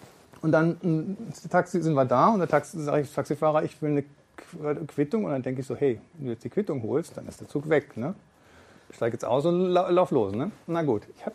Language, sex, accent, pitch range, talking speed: German, male, German, 160-205 Hz, 245 wpm